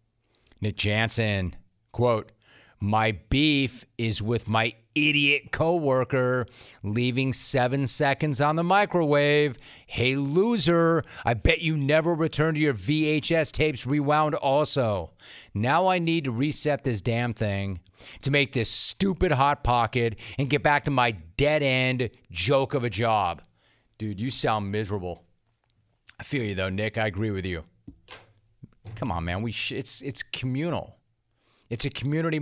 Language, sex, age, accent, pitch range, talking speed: English, male, 40-59, American, 110-150 Hz, 145 wpm